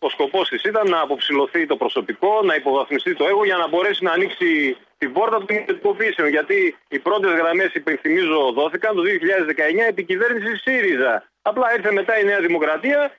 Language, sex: Greek, male